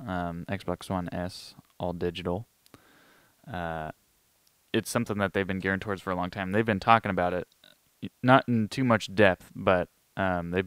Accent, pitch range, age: American, 90-105 Hz, 20-39